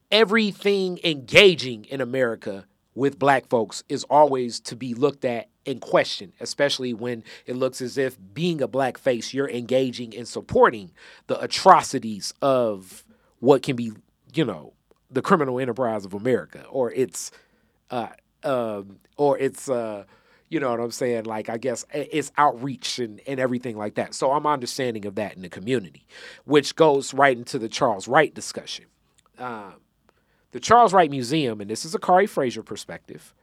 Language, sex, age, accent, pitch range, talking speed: English, male, 40-59, American, 115-150 Hz, 165 wpm